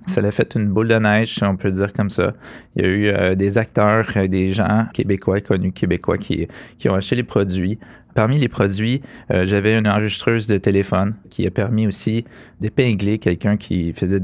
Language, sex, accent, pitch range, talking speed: French, male, Canadian, 95-105 Hz, 200 wpm